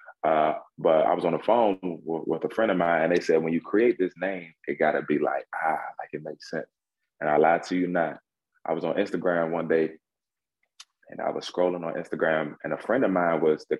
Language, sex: English, male